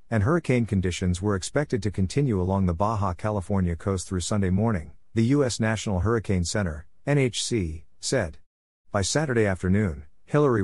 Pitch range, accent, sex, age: 90-110 Hz, American, male, 50-69